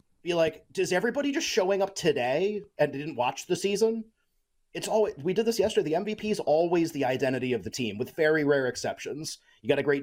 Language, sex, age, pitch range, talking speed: English, male, 30-49, 130-185 Hz, 215 wpm